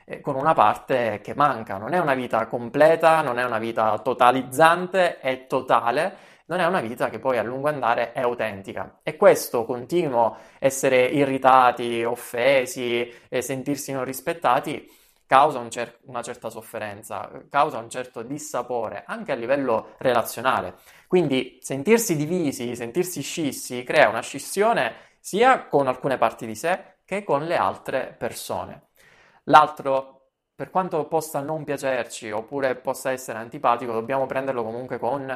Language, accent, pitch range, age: Italian, native, 120-155 Hz, 20-39